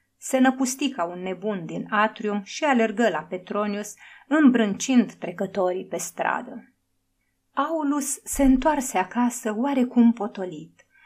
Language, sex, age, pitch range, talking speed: Romanian, female, 30-49, 185-255 Hz, 115 wpm